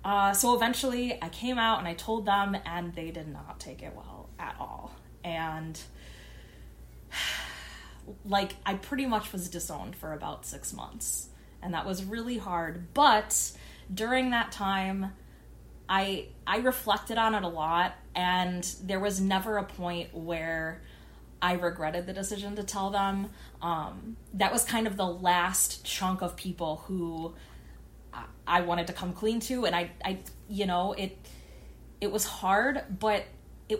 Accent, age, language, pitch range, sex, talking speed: American, 20-39, English, 170-205 Hz, female, 155 wpm